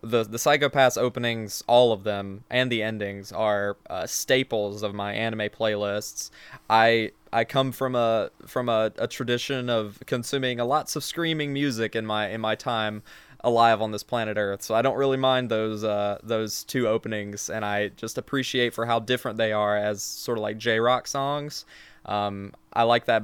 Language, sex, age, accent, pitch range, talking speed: English, male, 20-39, American, 105-125 Hz, 190 wpm